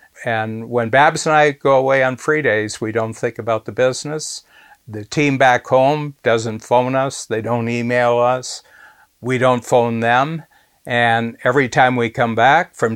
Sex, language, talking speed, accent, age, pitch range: male, English, 175 wpm, American, 60-79, 110-130 Hz